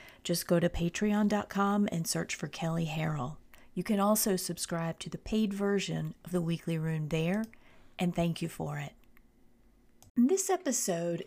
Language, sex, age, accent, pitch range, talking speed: English, female, 40-59, American, 165-210 Hz, 155 wpm